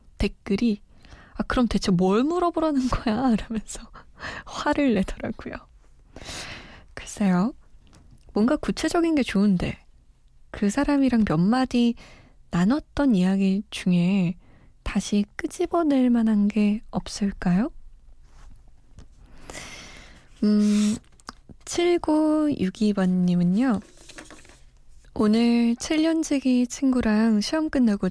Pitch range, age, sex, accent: 195-245 Hz, 20-39, female, native